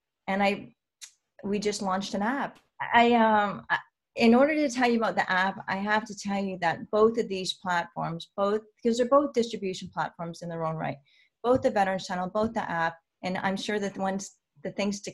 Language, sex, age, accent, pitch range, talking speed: English, female, 30-49, American, 175-210 Hz, 210 wpm